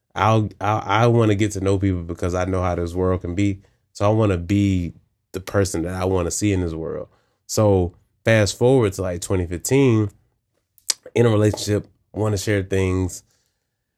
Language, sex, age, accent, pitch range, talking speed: English, male, 20-39, American, 95-115 Hz, 200 wpm